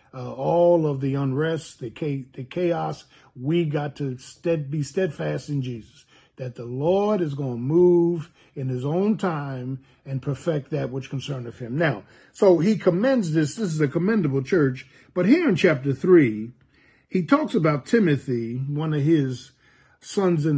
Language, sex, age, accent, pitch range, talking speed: English, male, 50-69, American, 135-175 Hz, 165 wpm